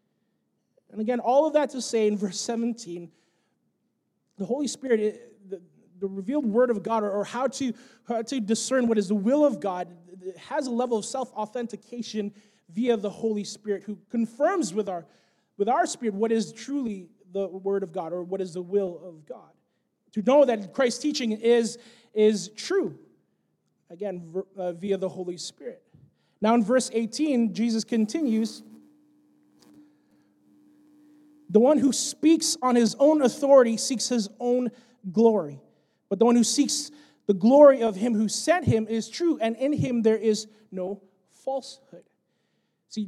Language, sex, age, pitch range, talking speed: English, male, 30-49, 195-255 Hz, 155 wpm